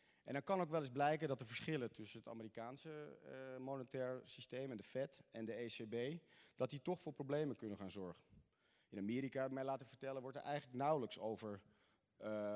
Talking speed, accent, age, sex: 190 wpm, Dutch, 40-59, male